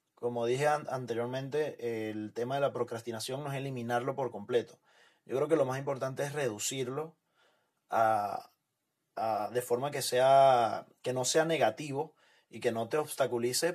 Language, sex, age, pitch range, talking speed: Spanish, male, 30-49, 115-135 Hz, 160 wpm